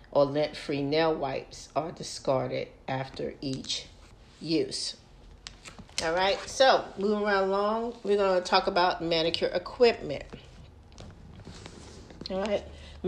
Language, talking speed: English, 110 wpm